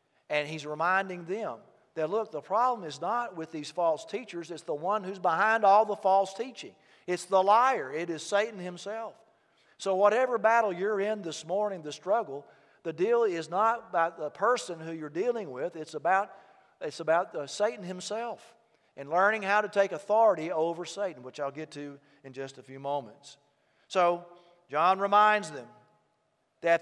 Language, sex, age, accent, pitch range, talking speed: English, male, 50-69, American, 160-210 Hz, 170 wpm